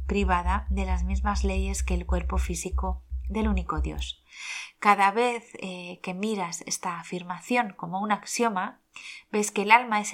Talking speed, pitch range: 160 wpm, 175-215 Hz